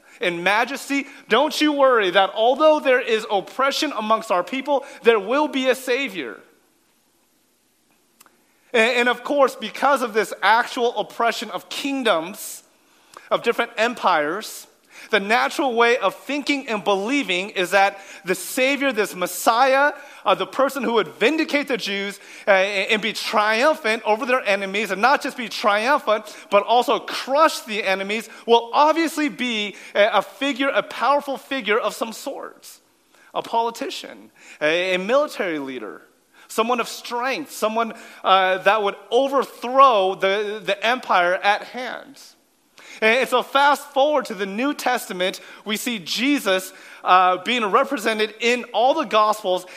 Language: English